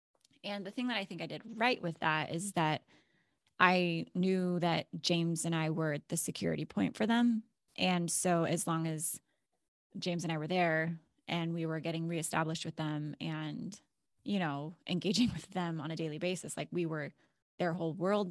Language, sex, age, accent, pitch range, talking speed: English, female, 20-39, American, 160-190 Hz, 190 wpm